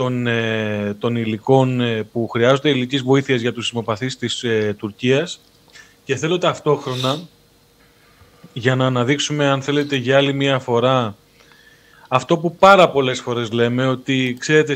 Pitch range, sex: 120-150 Hz, male